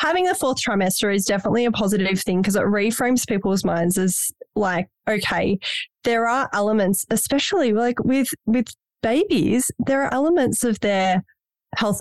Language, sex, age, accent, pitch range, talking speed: English, female, 10-29, Australian, 185-235 Hz, 155 wpm